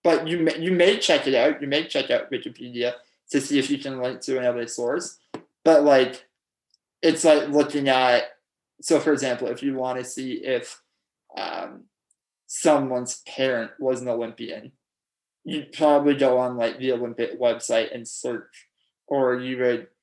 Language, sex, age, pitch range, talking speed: English, male, 20-39, 125-145 Hz, 165 wpm